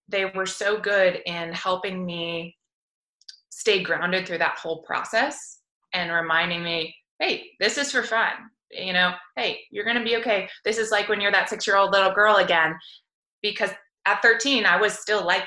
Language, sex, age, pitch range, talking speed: English, female, 20-39, 170-210 Hz, 185 wpm